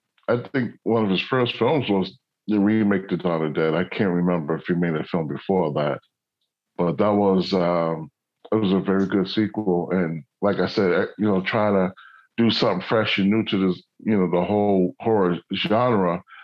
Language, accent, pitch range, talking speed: English, American, 85-105 Hz, 195 wpm